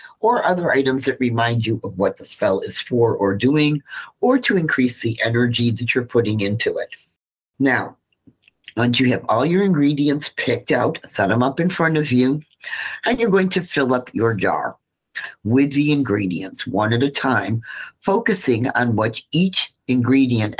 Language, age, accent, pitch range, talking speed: English, 50-69, American, 110-140 Hz, 175 wpm